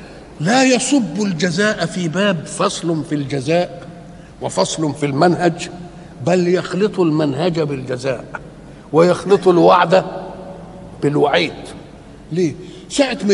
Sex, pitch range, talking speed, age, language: male, 170-210 Hz, 95 wpm, 60-79, Arabic